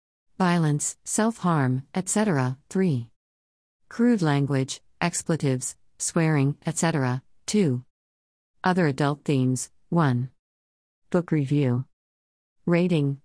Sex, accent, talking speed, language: female, American, 75 wpm, English